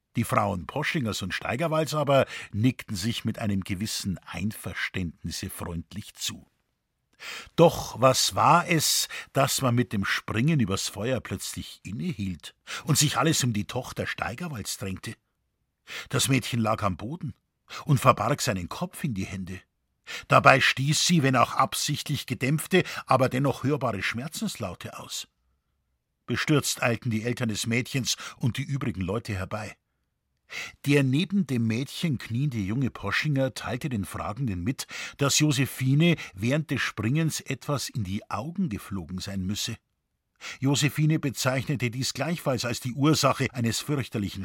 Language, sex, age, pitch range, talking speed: German, male, 50-69, 105-145 Hz, 140 wpm